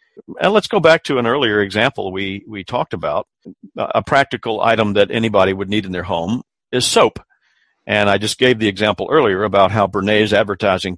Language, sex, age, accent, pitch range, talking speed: English, male, 50-69, American, 100-125 Hz, 190 wpm